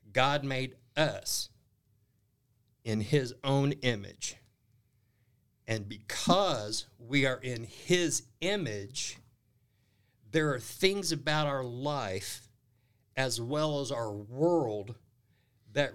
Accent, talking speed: American, 100 wpm